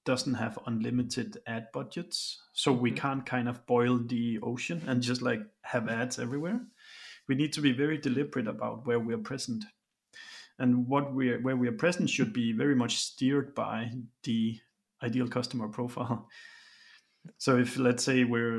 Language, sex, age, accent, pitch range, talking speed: English, male, 30-49, Danish, 120-150 Hz, 165 wpm